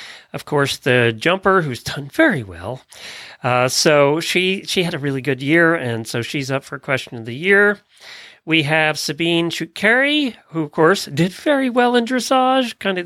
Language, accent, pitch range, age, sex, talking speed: English, American, 125-180 Hz, 40-59, male, 185 wpm